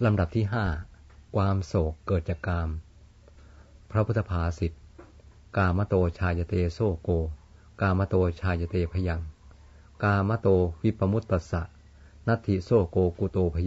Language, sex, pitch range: Thai, male, 85-100 Hz